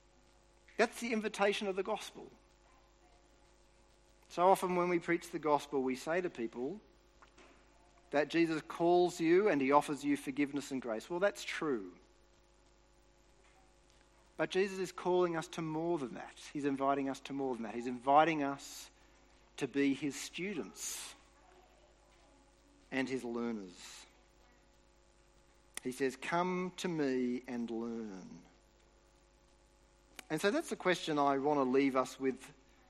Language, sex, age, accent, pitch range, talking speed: English, male, 50-69, Australian, 135-180 Hz, 135 wpm